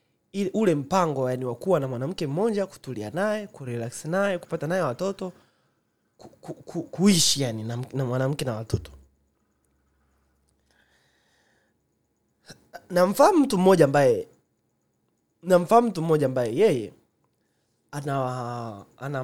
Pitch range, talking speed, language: 125-185 Hz, 95 wpm, Swahili